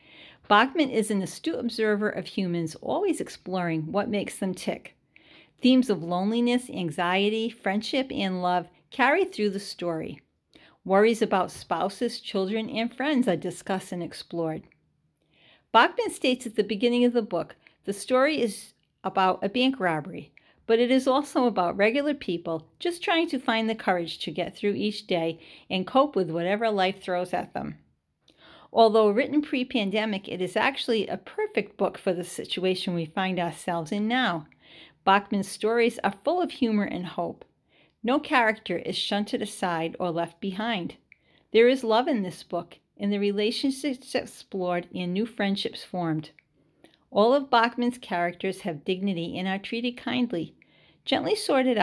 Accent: American